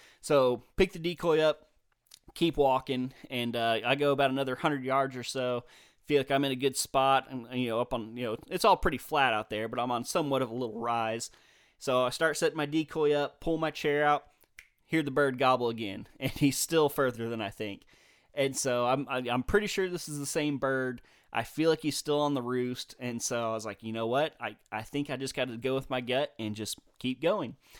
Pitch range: 120-145 Hz